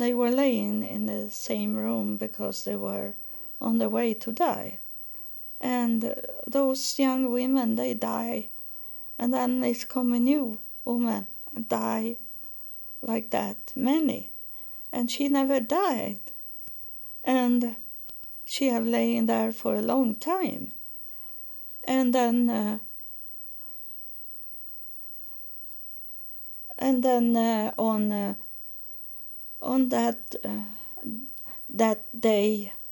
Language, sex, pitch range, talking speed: English, female, 210-255 Hz, 110 wpm